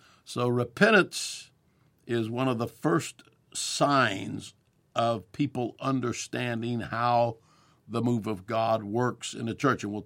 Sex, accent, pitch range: male, American, 110-125 Hz